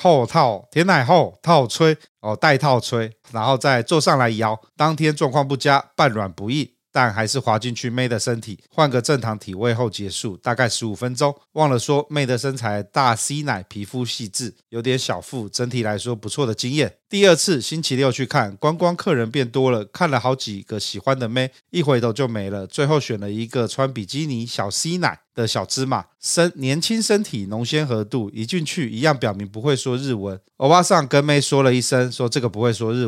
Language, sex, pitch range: Chinese, male, 115-145 Hz